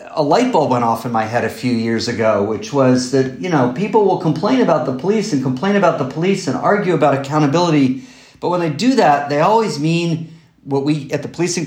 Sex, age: male, 50-69